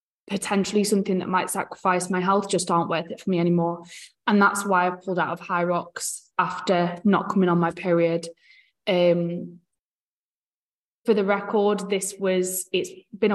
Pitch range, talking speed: 175-195 Hz, 165 wpm